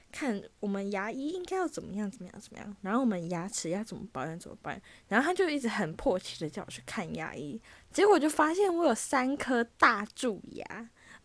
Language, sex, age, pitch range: Chinese, female, 10-29, 185-250 Hz